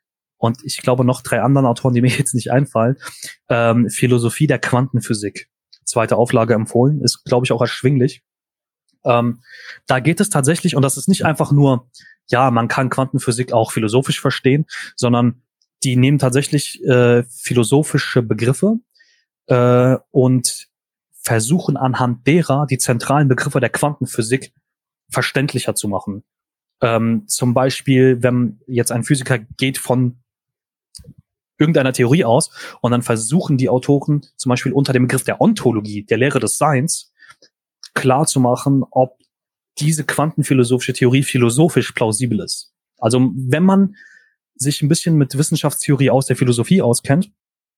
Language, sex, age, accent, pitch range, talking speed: German, male, 30-49, German, 120-145 Hz, 140 wpm